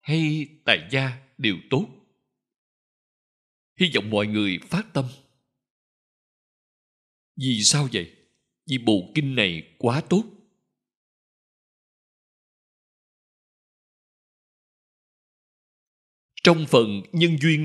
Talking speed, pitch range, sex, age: 80 wpm, 115-160 Hz, male, 60-79